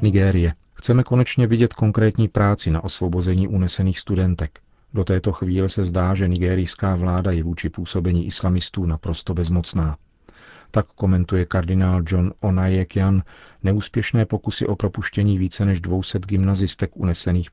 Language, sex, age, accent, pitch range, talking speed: Czech, male, 40-59, native, 85-100 Hz, 130 wpm